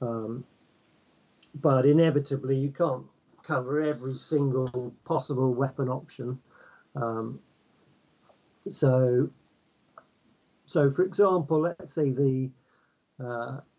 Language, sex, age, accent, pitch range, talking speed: English, male, 50-69, British, 130-150 Hz, 85 wpm